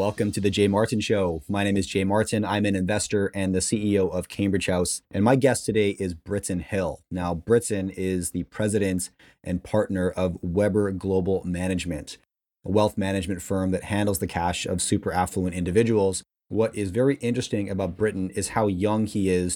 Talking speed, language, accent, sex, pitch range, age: 185 wpm, English, American, male, 95-105 Hz, 30-49